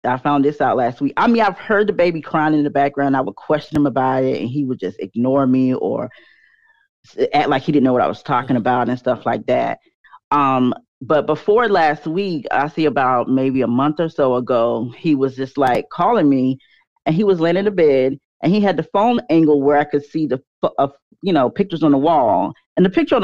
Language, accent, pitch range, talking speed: English, American, 135-190 Hz, 240 wpm